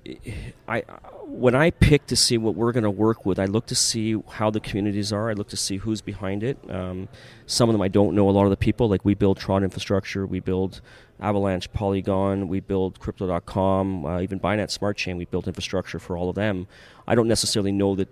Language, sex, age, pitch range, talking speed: English, male, 30-49, 95-110 Hz, 225 wpm